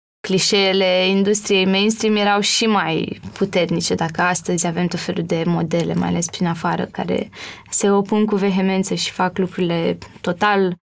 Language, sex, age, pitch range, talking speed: Romanian, female, 20-39, 180-210 Hz, 150 wpm